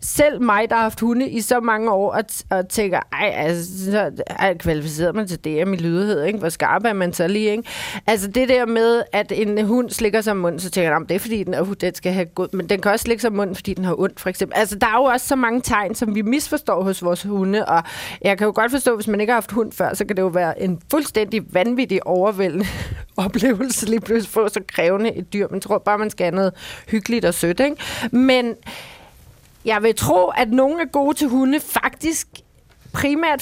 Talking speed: 240 wpm